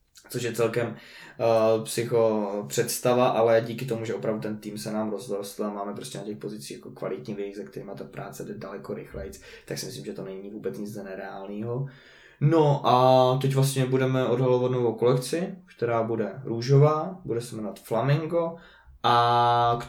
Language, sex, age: Czech, male, 20-39